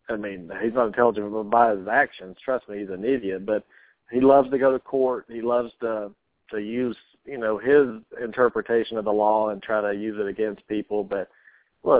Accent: American